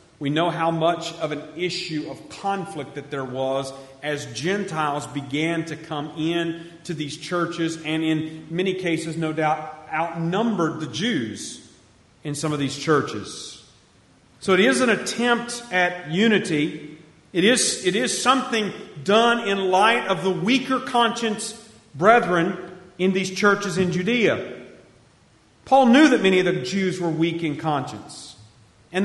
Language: English